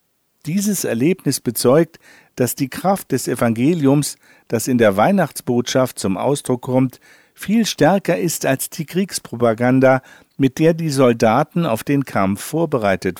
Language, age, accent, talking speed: German, 50-69, German, 130 wpm